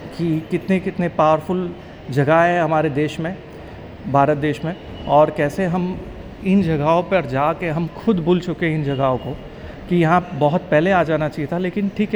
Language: English